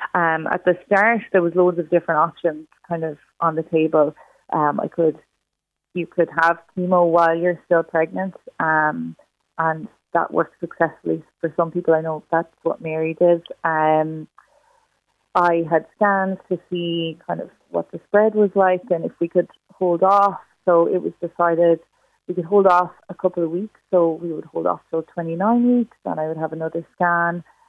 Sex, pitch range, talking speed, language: female, 160-180 Hz, 185 wpm, English